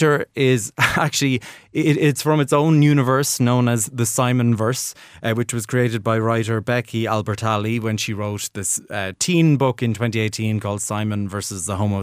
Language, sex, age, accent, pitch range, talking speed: English, male, 30-49, Irish, 110-130 Hz, 165 wpm